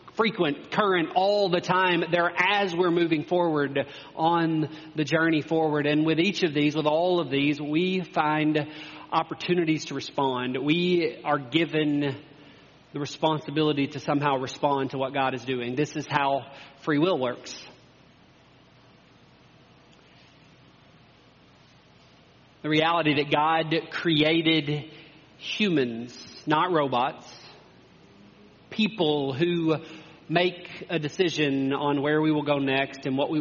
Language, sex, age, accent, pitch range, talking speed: English, male, 40-59, American, 140-160 Hz, 125 wpm